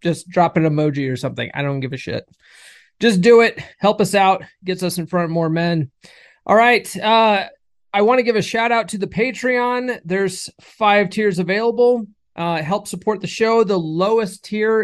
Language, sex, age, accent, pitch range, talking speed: English, male, 30-49, American, 150-195 Hz, 200 wpm